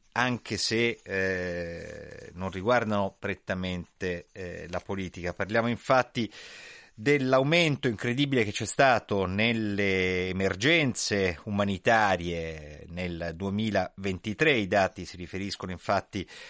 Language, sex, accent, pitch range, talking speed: Italian, male, native, 90-115 Hz, 95 wpm